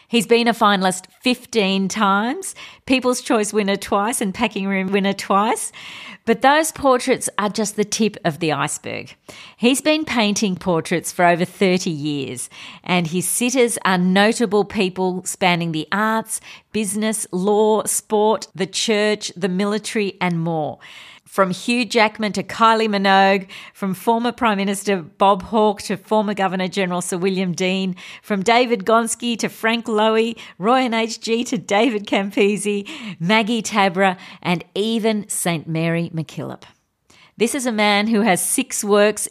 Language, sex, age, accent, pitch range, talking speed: English, female, 50-69, Australian, 175-220 Hz, 145 wpm